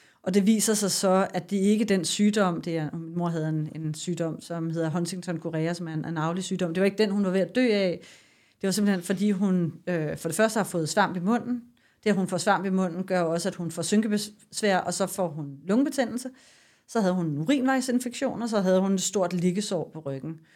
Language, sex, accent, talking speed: Danish, female, native, 235 wpm